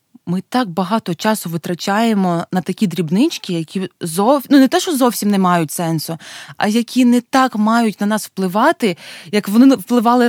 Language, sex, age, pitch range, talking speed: Ukrainian, female, 20-39, 190-235 Hz, 170 wpm